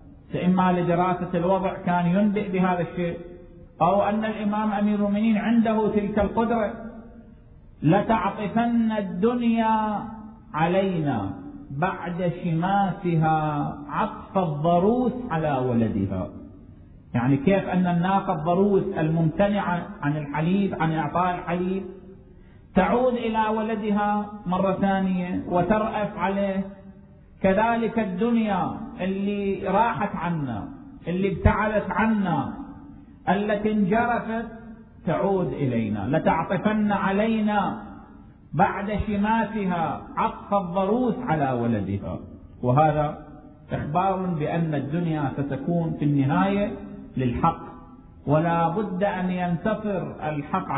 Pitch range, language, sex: 165-210 Hz, Arabic, male